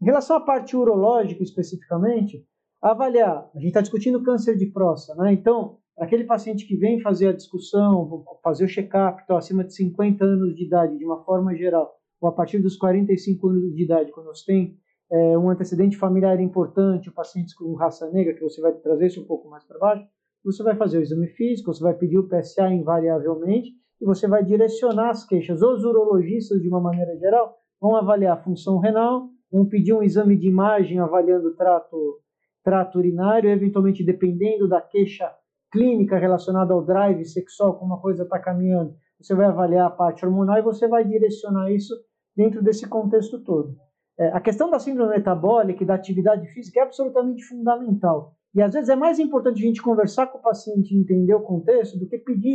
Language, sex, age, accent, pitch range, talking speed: Portuguese, male, 50-69, Brazilian, 180-225 Hz, 190 wpm